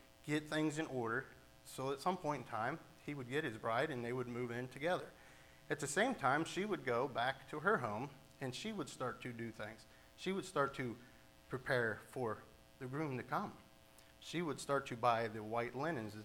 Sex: male